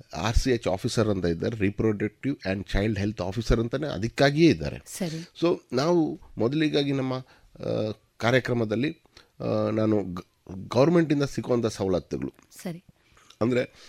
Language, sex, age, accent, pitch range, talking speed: Kannada, male, 30-49, native, 105-155 Hz, 110 wpm